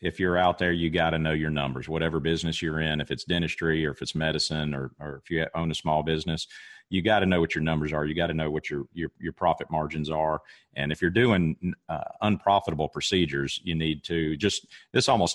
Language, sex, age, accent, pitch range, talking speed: English, male, 40-59, American, 80-100 Hz, 240 wpm